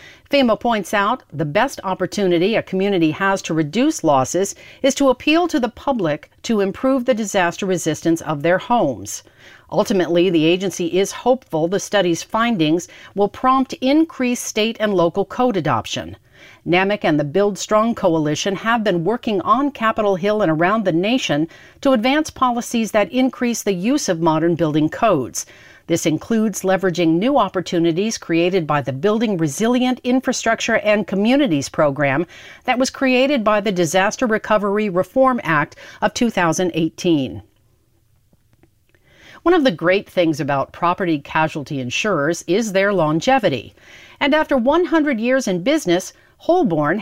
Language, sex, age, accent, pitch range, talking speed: English, female, 50-69, American, 170-245 Hz, 145 wpm